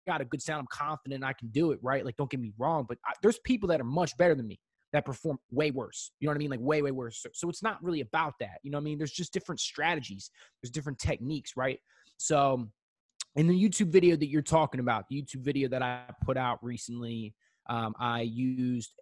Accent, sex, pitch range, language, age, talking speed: American, male, 115-145 Hz, English, 20-39, 250 wpm